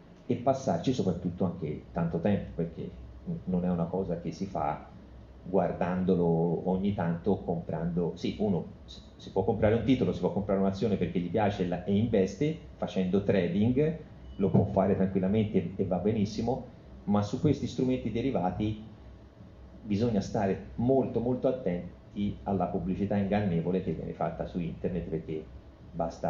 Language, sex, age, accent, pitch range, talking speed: Italian, male, 30-49, native, 85-115 Hz, 145 wpm